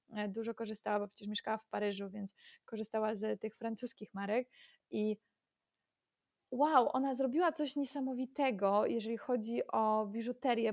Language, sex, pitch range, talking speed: Polish, female, 210-260 Hz, 130 wpm